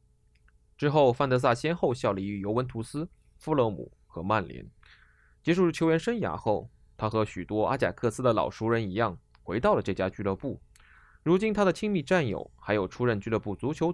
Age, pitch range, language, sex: 20-39, 95-135 Hz, Chinese, male